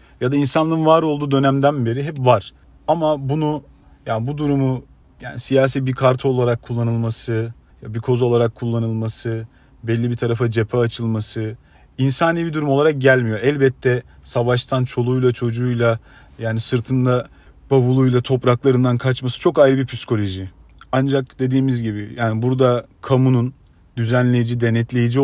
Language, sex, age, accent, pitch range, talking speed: Turkish, male, 40-59, native, 115-135 Hz, 135 wpm